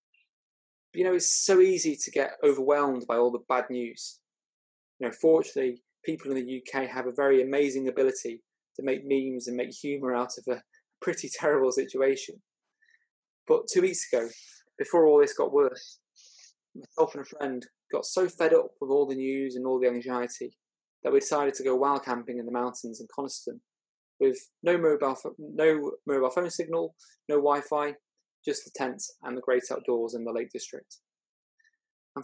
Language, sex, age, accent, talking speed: English, male, 20-39, British, 175 wpm